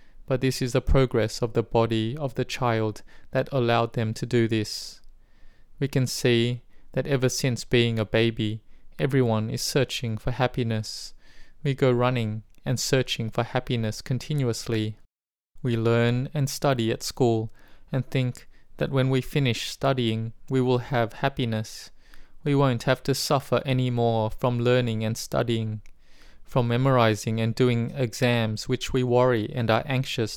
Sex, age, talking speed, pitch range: male, 20-39, 155 wpm, 115-130 Hz